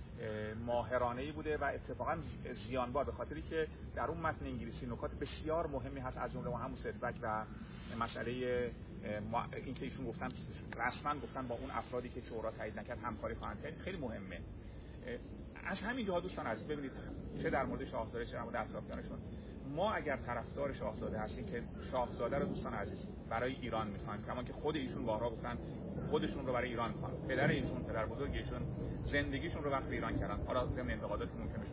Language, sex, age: Persian, male, 40-59